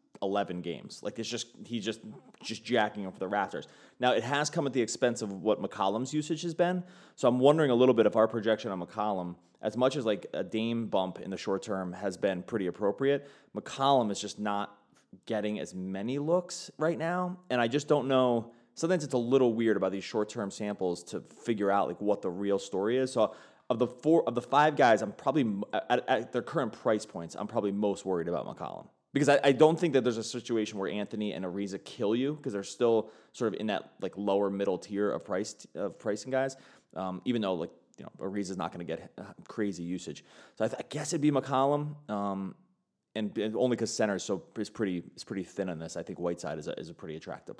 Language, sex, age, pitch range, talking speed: English, male, 20-39, 100-135 Hz, 235 wpm